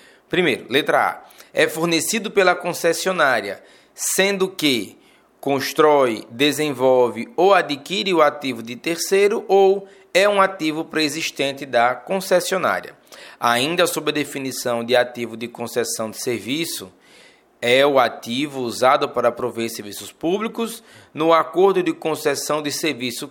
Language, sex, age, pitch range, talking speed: Portuguese, male, 20-39, 140-190 Hz, 125 wpm